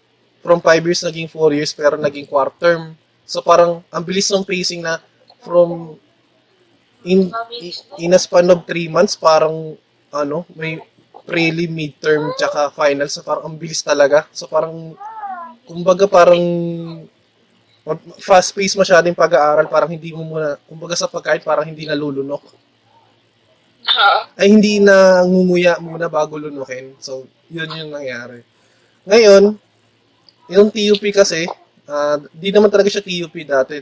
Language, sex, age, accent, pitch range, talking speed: Filipino, male, 20-39, native, 145-175 Hz, 135 wpm